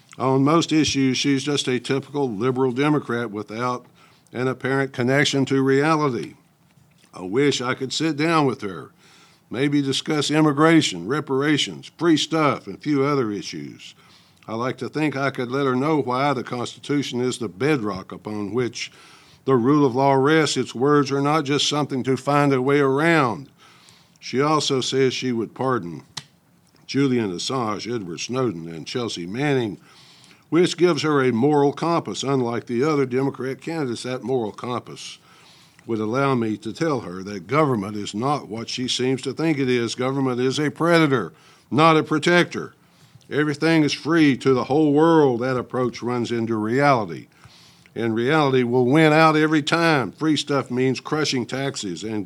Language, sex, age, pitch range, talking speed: English, male, 60-79, 125-150 Hz, 165 wpm